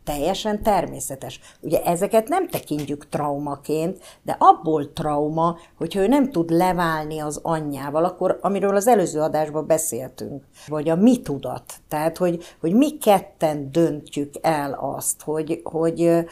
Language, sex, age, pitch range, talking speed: Hungarian, female, 60-79, 155-210 Hz, 135 wpm